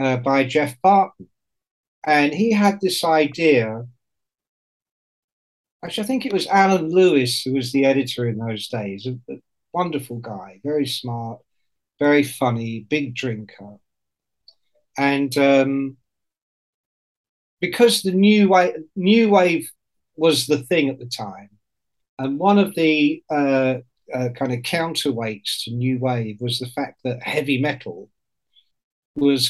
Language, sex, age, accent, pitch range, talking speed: English, male, 50-69, British, 125-160 Hz, 135 wpm